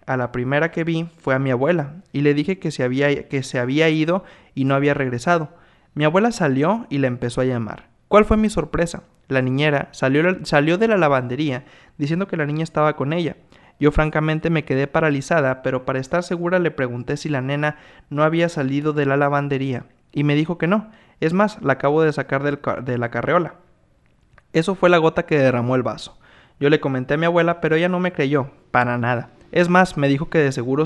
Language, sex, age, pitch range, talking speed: Spanish, male, 20-39, 135-165 Hz, 220 wpm